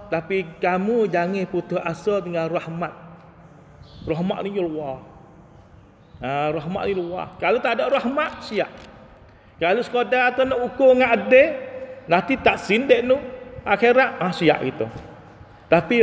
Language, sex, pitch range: Thai, male, 150-235 Hz